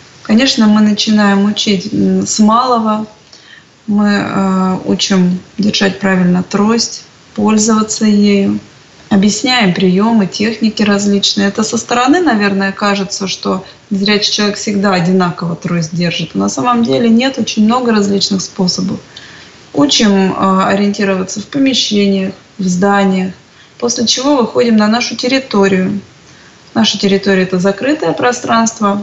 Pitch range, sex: 195-230 Hz, female